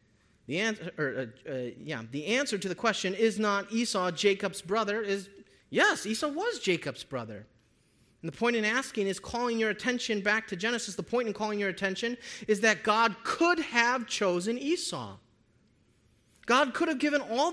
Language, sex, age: English, male, 30-49